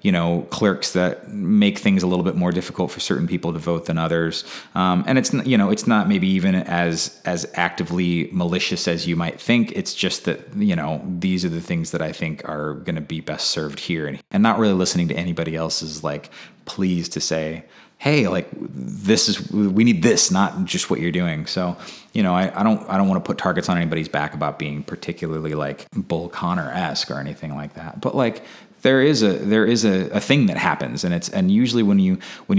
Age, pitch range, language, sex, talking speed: 30-49, 85-140 Hz, English, male, 225 wpm